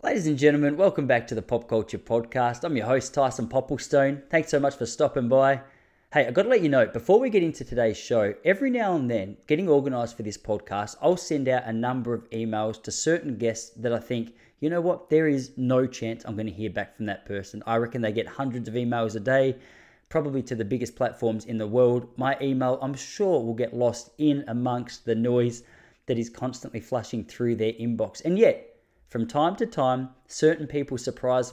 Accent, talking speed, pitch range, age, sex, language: Australian, 220 wpm, 115-140 Hz, 20-39, male, English